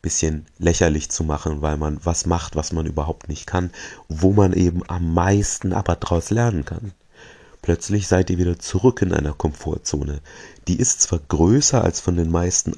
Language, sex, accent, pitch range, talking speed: German, male, German, 80-95 Hz, 180 wpm